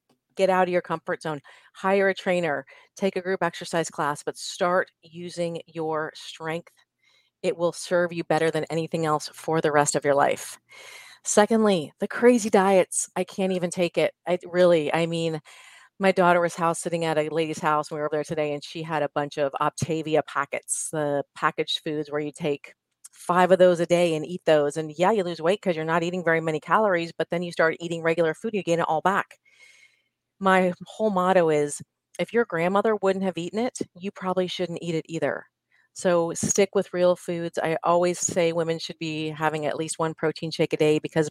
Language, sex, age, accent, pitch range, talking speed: English, female, 30-49, American, 160-190 Hz, 210 wpm